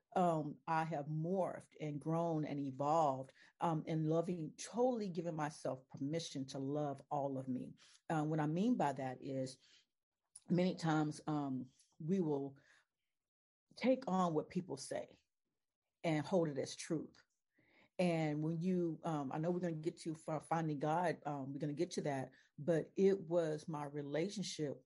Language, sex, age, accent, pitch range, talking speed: English, female, 50-69, American, 150-185 Hz, 160 wpm